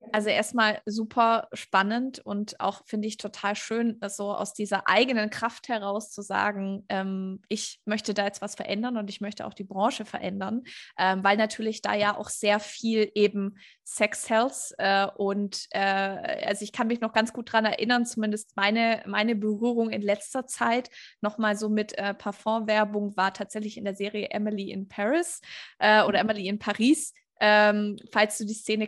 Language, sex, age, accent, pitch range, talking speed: German, female, 20-39, German, 200-220 Hz, 180 wpm